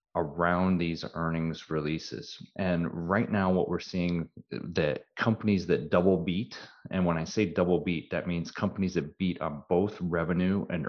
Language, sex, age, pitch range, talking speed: English, male, 30-49, 85-95 Hz, 165 wpm